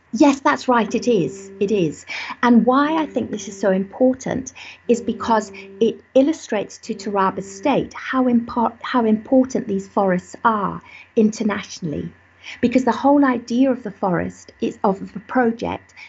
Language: English